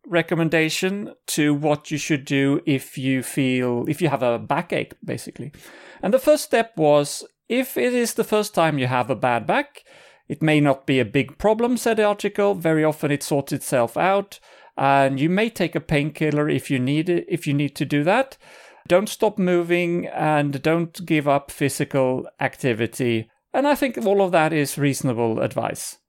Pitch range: 140-200 Hz